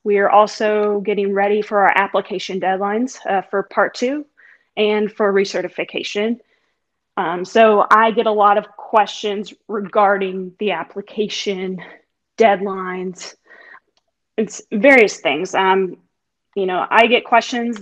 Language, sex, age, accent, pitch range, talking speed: English, female, 20-39, American, 195-225 Hz, 125 wpm